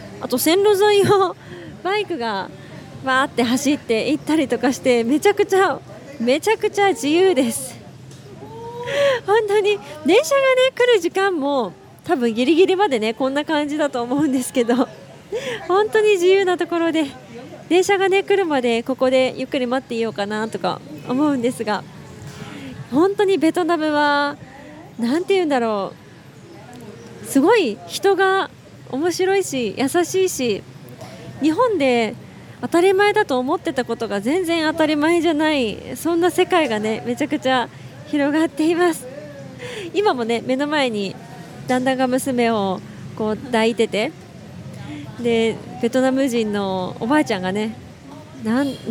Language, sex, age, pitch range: Japanese, female, 20-39, 230-355 Hz